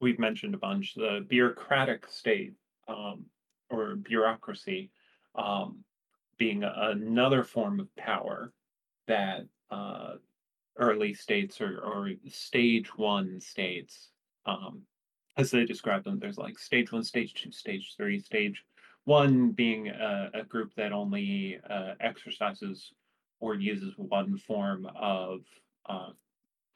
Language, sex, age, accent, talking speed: English, male, 30-49, American, 120 wpm